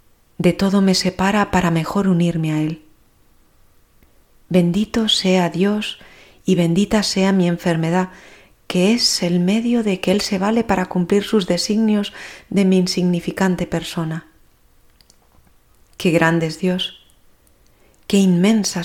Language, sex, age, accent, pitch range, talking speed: Spanish, female, 40-59, Spanish, 175-205 Hz, 125 wpm